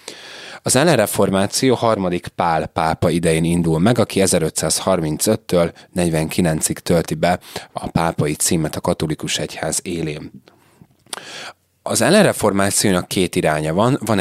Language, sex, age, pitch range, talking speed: Hungarian, male, 30-49, 80-100 Hz, 115 wpm